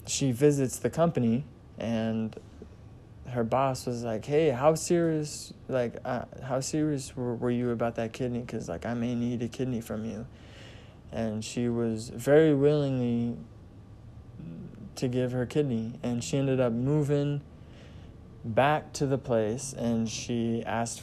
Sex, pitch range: male, 110-130 Hz